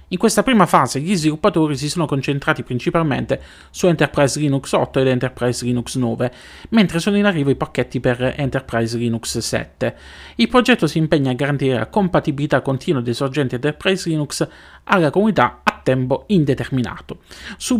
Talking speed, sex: 160 wpm, male